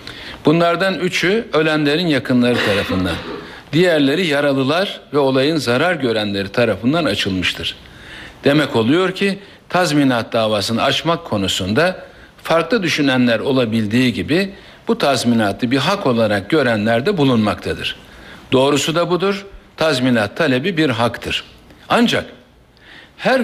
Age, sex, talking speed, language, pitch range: 60-79, male, 105 wpm, Turkish, 115-170 Hz